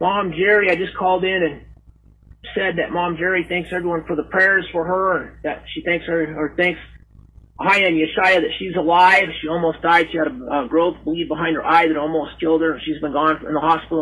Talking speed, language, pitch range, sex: 225 wpm, English, 160-190 Hz, male